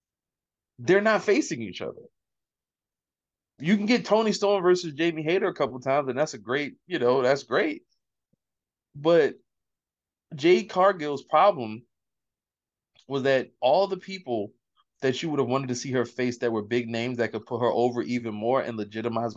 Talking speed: 170 wpm